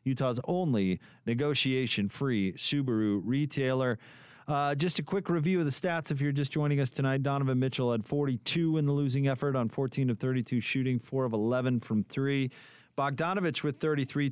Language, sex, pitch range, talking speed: English, male, 105-140 Hz, 170 wpm